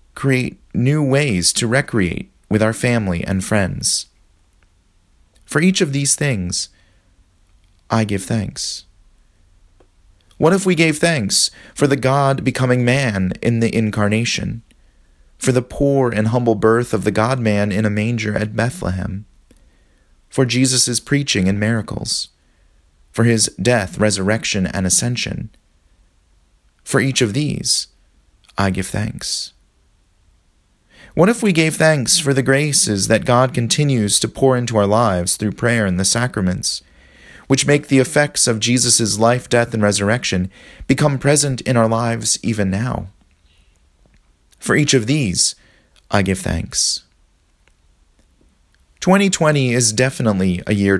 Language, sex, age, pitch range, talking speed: English, male, 30-49, 90-125 Hz, 135 wpm